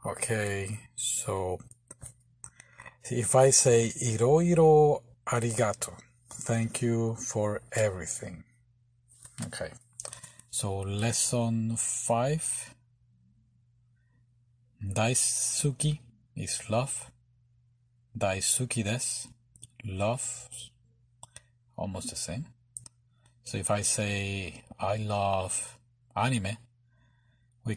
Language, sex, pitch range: Japanese, male, 110-125 Hz